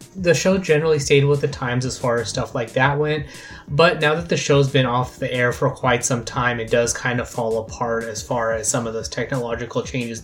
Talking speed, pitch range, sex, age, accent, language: 240 wpm, 125-150 Hz, male, 20-39, American, English